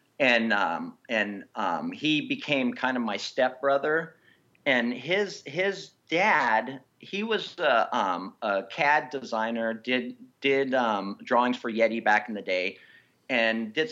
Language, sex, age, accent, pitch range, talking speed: English, male, 40-59, American, 120-175 Hz, 140 wpm